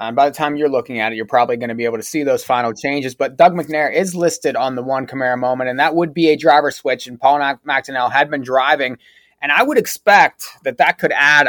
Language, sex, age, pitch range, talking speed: English, male, 30-49, 140-170 Hz, 270 wpm